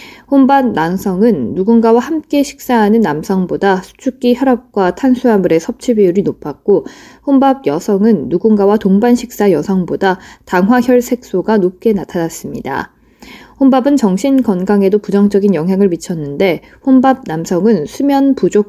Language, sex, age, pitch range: Korean, female, 20-39, 180-230 Hz